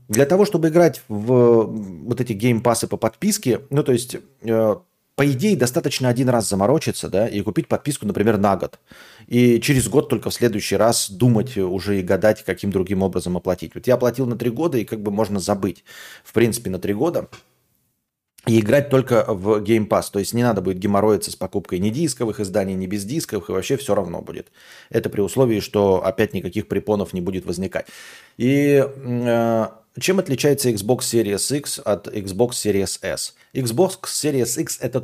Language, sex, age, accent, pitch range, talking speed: Russian, male, 30-49, native, 105-140 Hz, 185 wpm